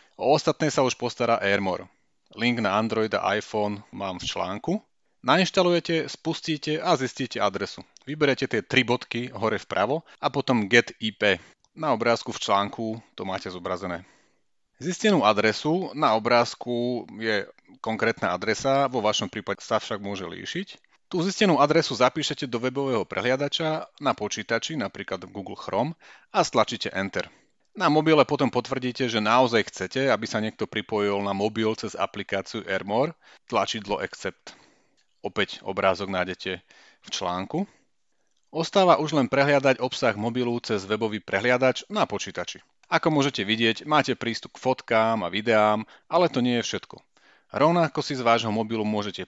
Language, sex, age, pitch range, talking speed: Slovak, male, 30-49, 105-135 Hz, 145 wpm